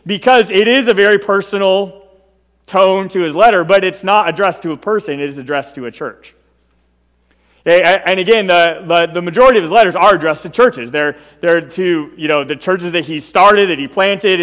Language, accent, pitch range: English, American, 150-195 Hz